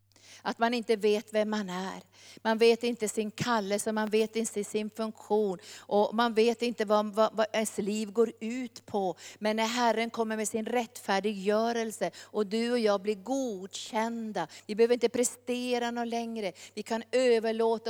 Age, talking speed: 50-69, 170 wpm